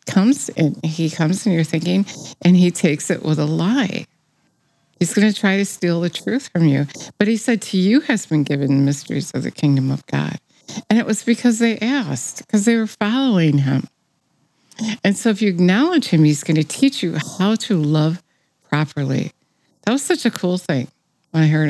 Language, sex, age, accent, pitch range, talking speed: English, female, 50-69, American, 155-220 Hz, 200 wpm